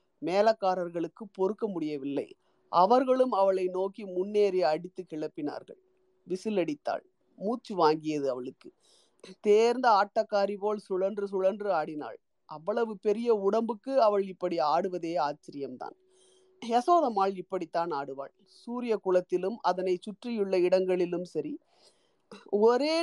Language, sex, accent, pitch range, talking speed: Tamil, female, native, 180-230 Hz, 95 wpm